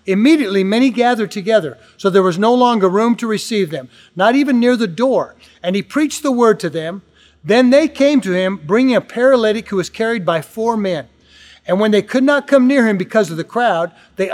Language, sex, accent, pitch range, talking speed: English, male, American, 180-240 Hz, 220 wpm